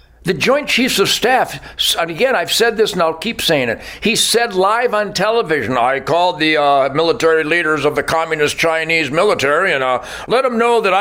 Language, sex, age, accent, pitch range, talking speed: English, male, 60-79, American, 155-200 Hz, 200 wpm